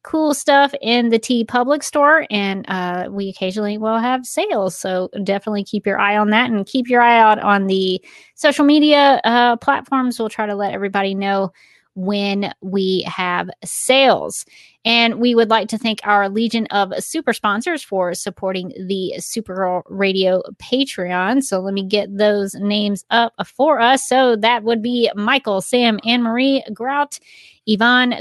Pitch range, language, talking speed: 195-240 Hz, English, 165 wpm